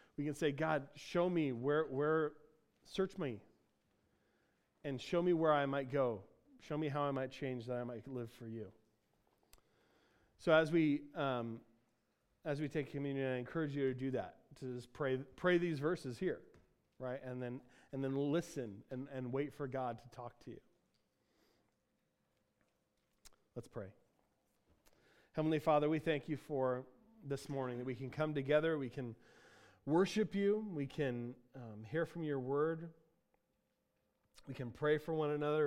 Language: English